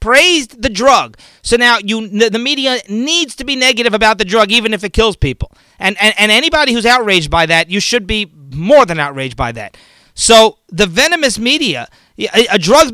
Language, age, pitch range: English, 40-59, 200-265 Hz